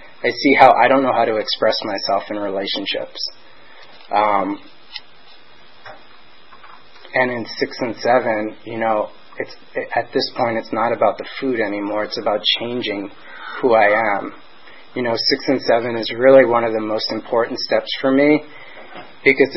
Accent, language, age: American, English, 30-49